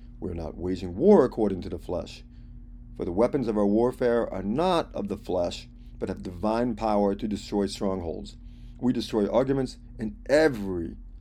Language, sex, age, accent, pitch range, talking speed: English, male, 40-59, American, 90-125 Hz, 170 wpm